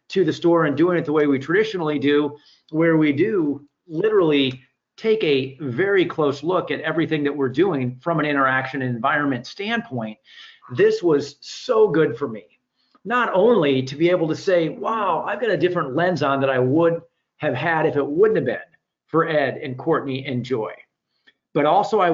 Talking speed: 185 wpm